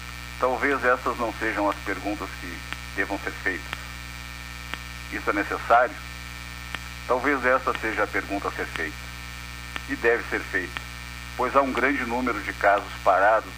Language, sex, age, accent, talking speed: Portuguese, male, 60-79, Brazilian, 145 wpm